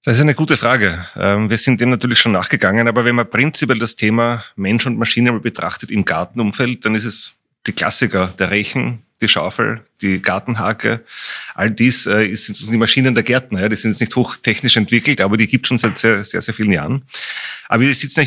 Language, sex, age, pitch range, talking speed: German, male, 30-49, 100-125 Hz, 200 wpm